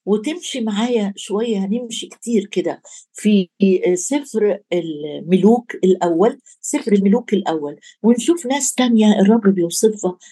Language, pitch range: Arabic, 190-235 Hz